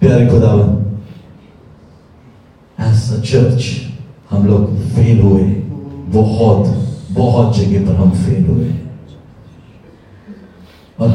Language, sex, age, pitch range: English, male, 40-59, 100-120 Hz